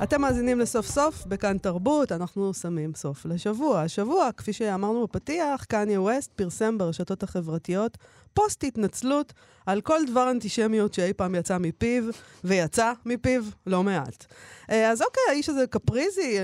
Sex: female